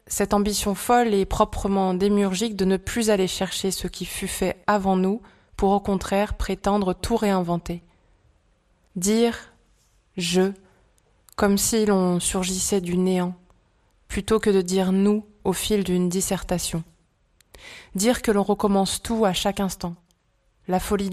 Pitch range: 180-205 Hz